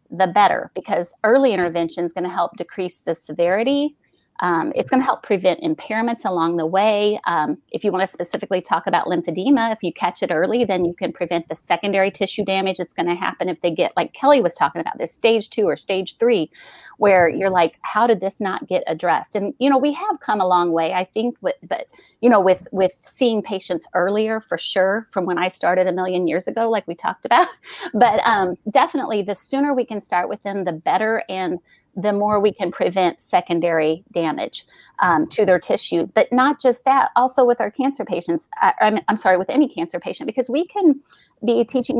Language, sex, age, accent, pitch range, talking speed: English, female, 30-49, American, 180-235 Hz, 215 wpm